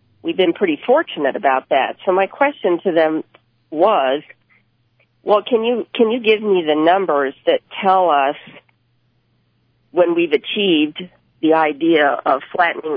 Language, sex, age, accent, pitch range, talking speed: English, female, 50-69, American, 145-185 Hz, 145 wpm